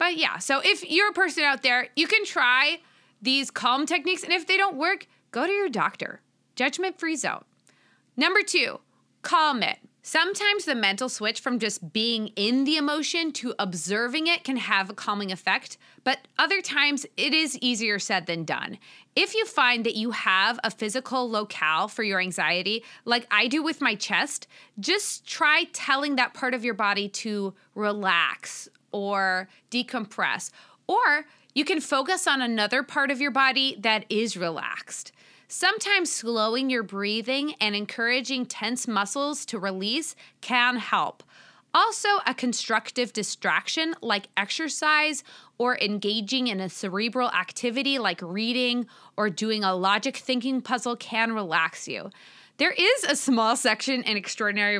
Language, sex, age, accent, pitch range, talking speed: English, female, 20-39, American, 210-300 Hz, 155 wpm